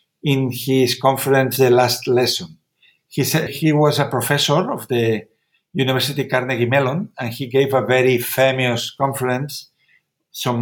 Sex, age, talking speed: male, 50-69, 140 wpm